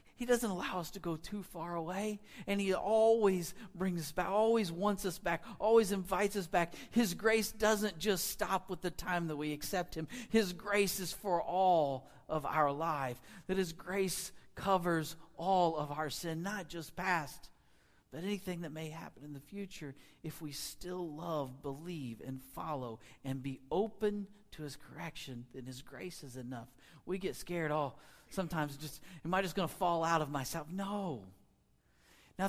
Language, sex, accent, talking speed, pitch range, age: English, male, American, 180 wpm, 160-205 Hz, 40-59